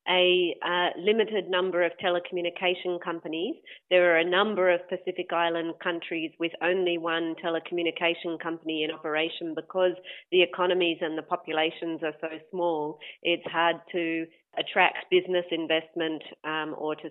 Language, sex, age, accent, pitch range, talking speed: English, female, 30-49, Australian, 155-175 Hz, 140 wpm